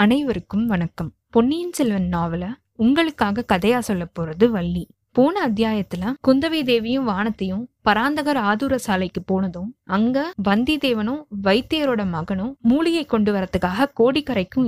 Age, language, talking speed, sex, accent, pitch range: 20-39, Tamil, 110 wpm, female, native, 195-250 Hz